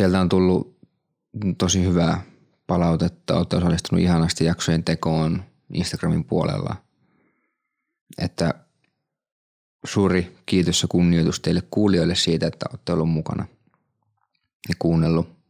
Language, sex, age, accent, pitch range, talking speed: Finnish, male, 30-49, native, 85-100 Hz, 105 wpm